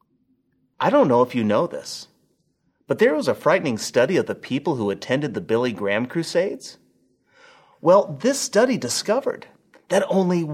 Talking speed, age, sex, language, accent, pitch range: 160 wpm, 30-49, male, English, American, 130-215 Hz